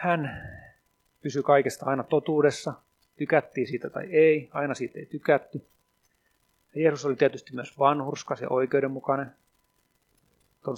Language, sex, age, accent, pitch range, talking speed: Swedish, male, 30-49, Finnish, 125-150 Hz, 120 wpm